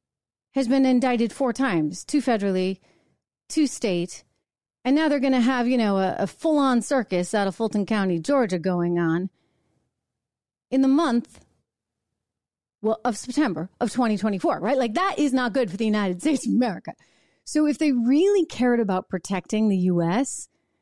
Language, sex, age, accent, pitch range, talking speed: English, female, 30-49, American, 195-270 Hz, 165 wpm